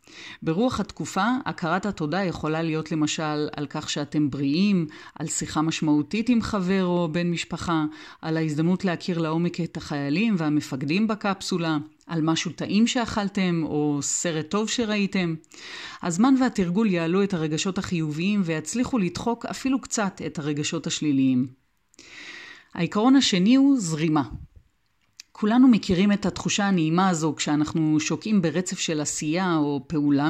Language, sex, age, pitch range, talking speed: Hebrew, female, 30-49, 155-205 Hz, 130 wpm